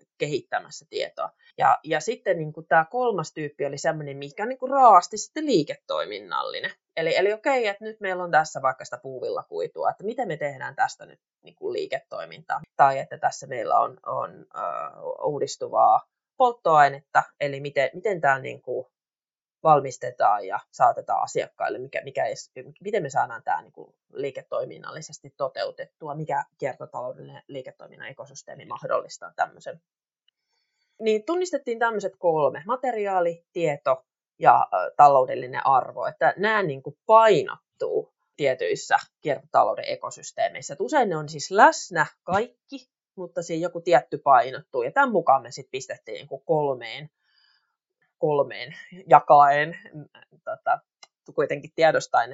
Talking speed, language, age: 130 wpm, Finnish, 20-39